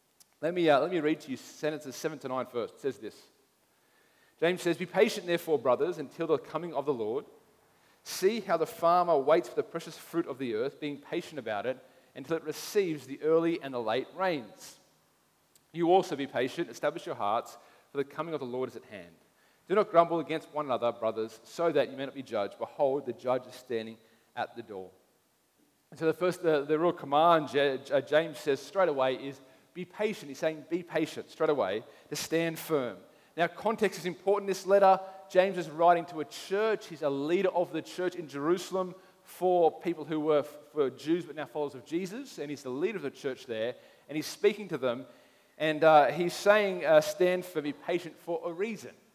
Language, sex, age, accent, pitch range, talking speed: English, male, 40-59, Australian, 145-180 Hz, 205 wpm